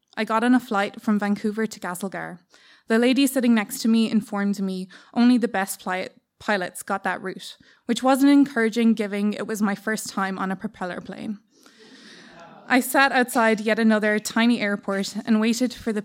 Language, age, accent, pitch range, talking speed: English, 20-39, Irish, 200-235 Hz, 185 wpm